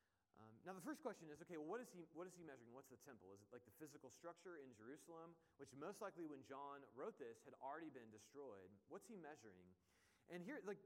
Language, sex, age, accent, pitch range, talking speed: English, male, 30-49, American, 110-170 Hz, 230 wpm